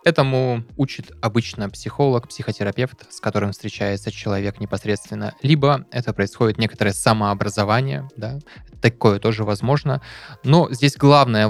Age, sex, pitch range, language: 20-39, male, 105-125 Hz, Russian